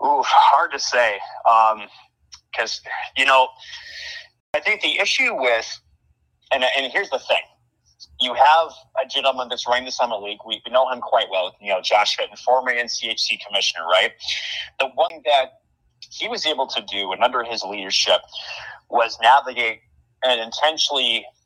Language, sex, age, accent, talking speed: English, male, 30-49, American, 155 wpm